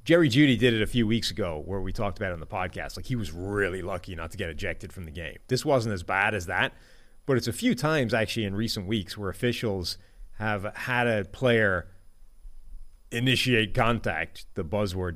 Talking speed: 210 wpm